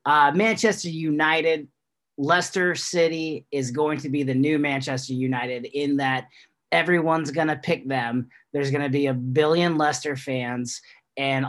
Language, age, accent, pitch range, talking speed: English, 30-49, American, 135-160 Hz, 150 wpm